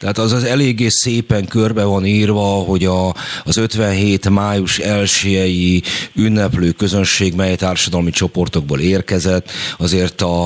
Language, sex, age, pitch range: Hungarian, male, 30-49, 85-105 Hz